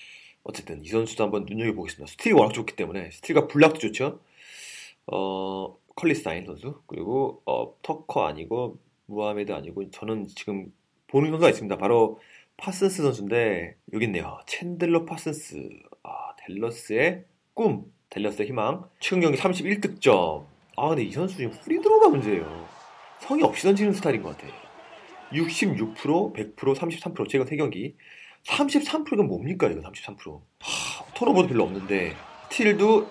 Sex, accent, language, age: male, native, Korean, 30-49